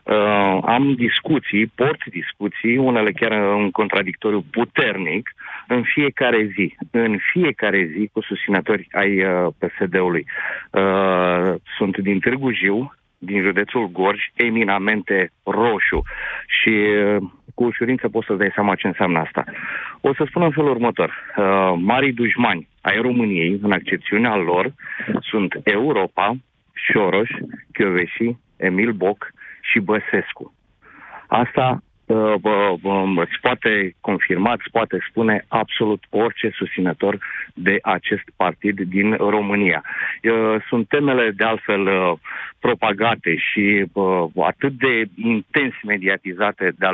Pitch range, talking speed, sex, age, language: 100-120 Hz, 120 wpm, male, 40-59, Romanian